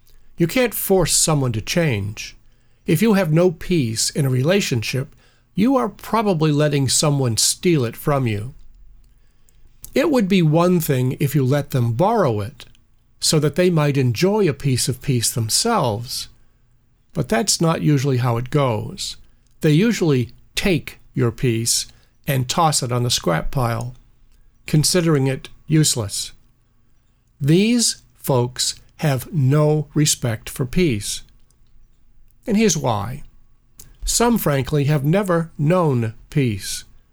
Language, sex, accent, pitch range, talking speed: English, male, American, 120-160 Hz, 135 wpm